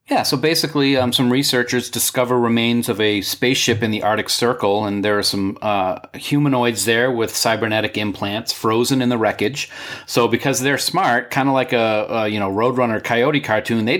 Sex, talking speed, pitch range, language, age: male, 190 wpm, 105-125 Hz, English, 40-59